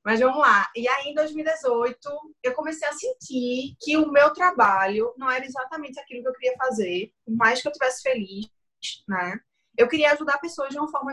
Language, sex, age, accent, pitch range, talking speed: Portuguese, female, 20-39, Brazilian, 225-295 Hz, 195 wpm